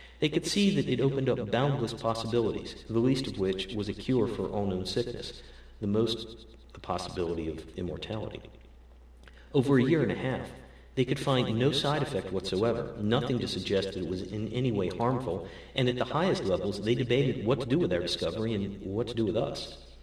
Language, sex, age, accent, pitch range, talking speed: English, male, 50-69, American, 95-125 Hz, 200 wpm